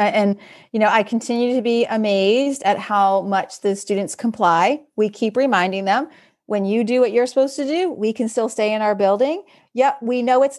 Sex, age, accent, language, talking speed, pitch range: female, 30-49, American, English, 210 wpm, 205-270 Hz